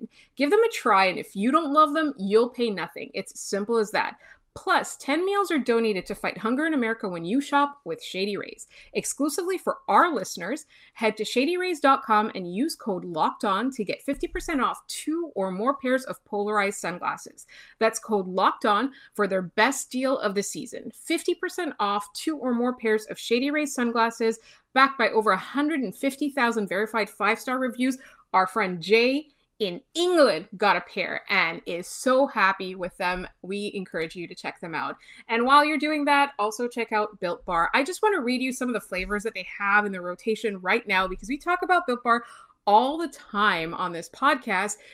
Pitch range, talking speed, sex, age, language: 205-280 Hz, 190 wpm, female, 30-49, English